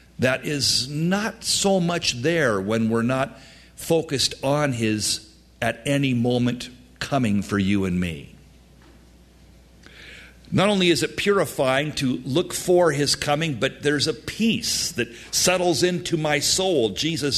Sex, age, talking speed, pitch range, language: male, 50-69, 140 wpm, 115-165 Hz, English